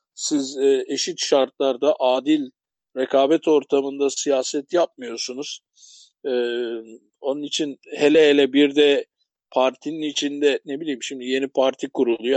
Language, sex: Turkish, male